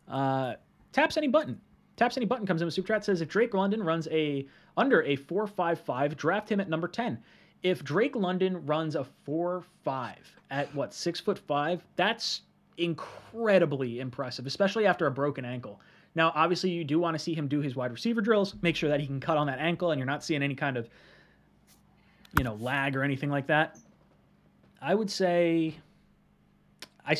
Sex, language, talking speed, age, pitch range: male, English, 180 wpm, 30-49, 140-185 Hz